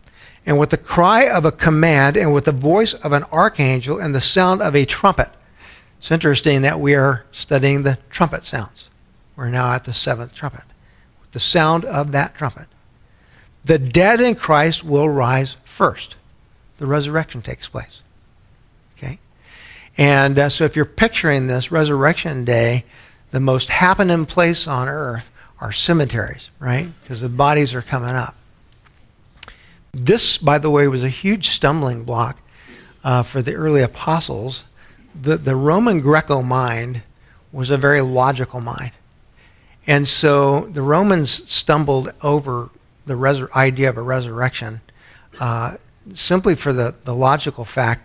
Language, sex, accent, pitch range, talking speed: English, male, American, 125-155 Hz, 145 wpm